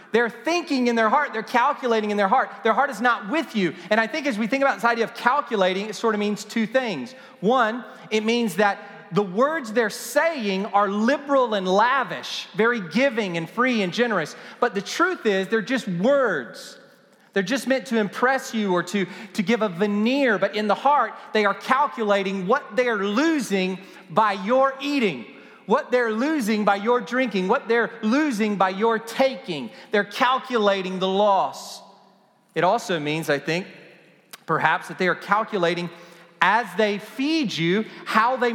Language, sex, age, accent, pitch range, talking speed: English, male, 40-59, American, 185-250 Hz, 180 wpm